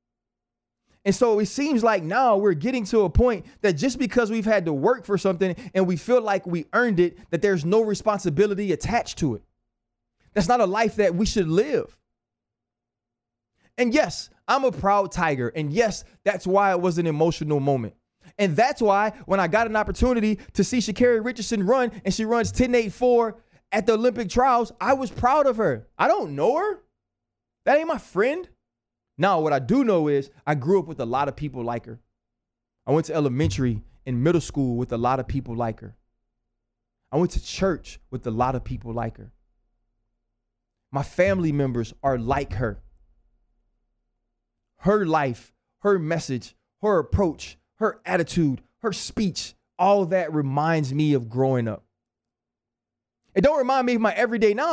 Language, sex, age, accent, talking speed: English, male, 20-39, American, 180 wpm